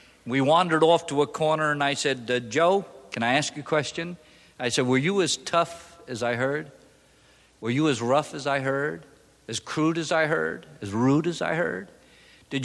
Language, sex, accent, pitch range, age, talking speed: English, male, American, 135-195 Hz, 50-69, 210 wpm